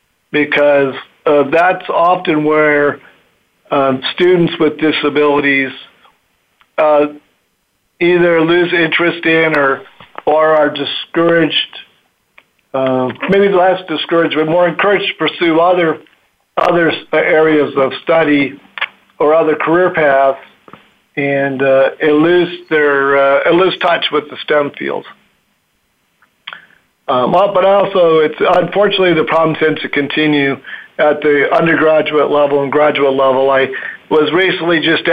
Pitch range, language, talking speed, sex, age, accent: 140-165 Hz, English, 120 wpm, male, 50-69, American